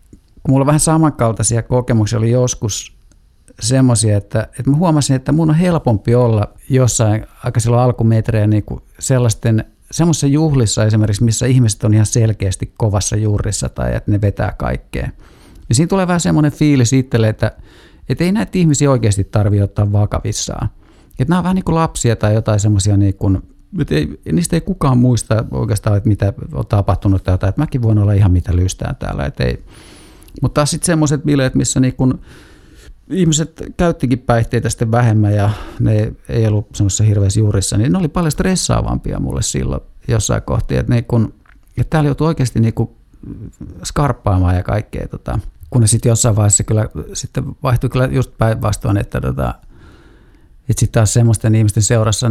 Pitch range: 105-130 Hz